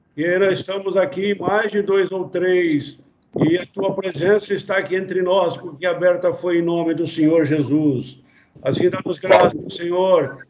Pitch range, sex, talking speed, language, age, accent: 175-195 Hz, male, 160 wpm, Portuguese, 60-79, Brazilian